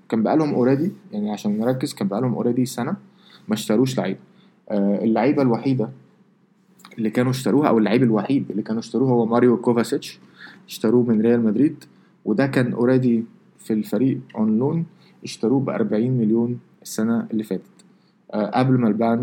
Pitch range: 115-160 Hz